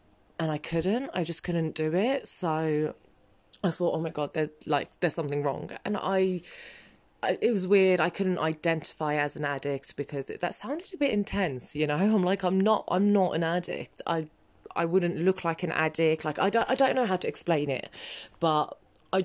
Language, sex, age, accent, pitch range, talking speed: English, female, 20-39, British, 150-180 Hz, 205 wpm